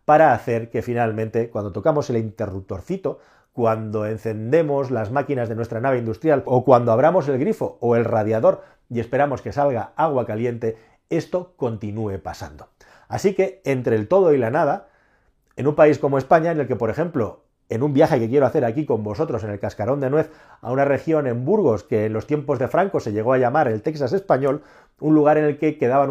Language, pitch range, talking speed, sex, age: Spanish, 115-150 Hz, 205 wpm, male, 40-59